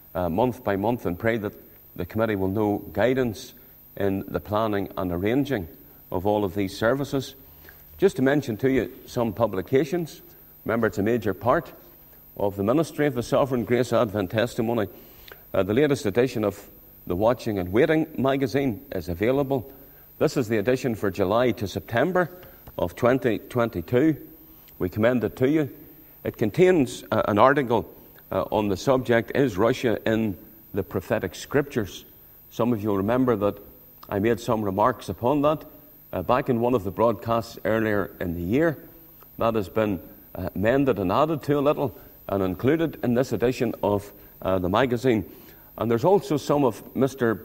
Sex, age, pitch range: male, 50-69, 100-135 Hz